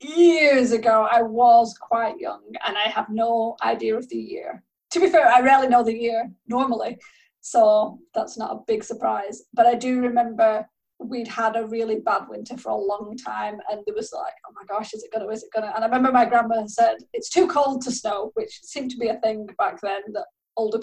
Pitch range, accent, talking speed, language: 225-295 Hz, British, 220 wpm, English